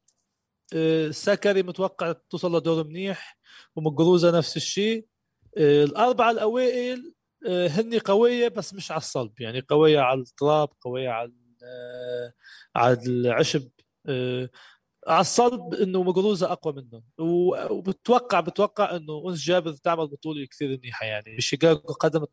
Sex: male